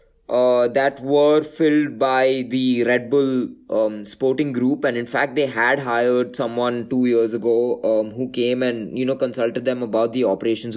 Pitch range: 115-140 Hz